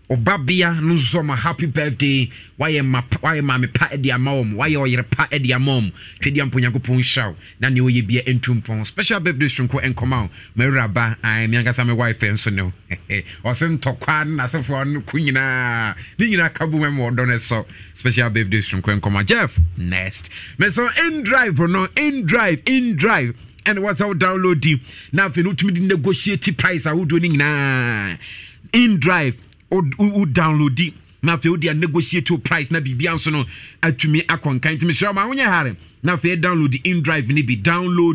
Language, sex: English, male